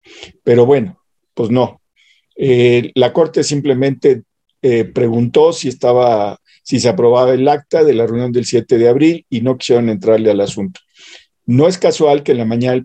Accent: Mexican